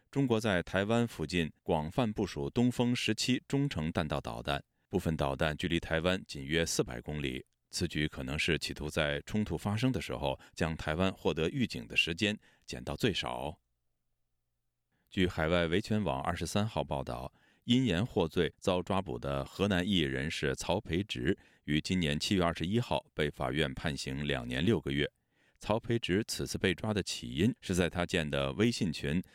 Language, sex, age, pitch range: Chinese, male, 30-49, 70-95 Hz